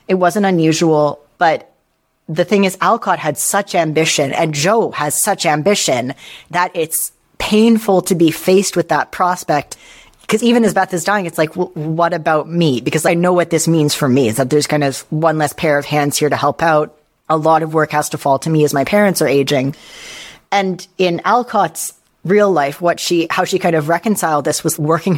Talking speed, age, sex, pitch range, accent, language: 205 wpm, 30-49, female, 150-185 Hz, American, English